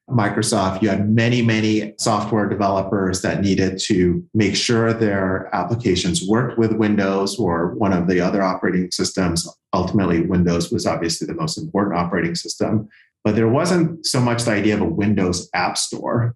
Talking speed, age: 165 wpm, 30-49